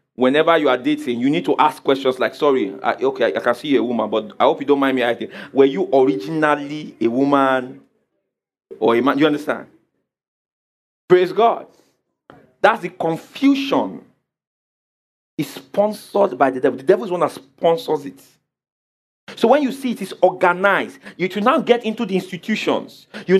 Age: 40-59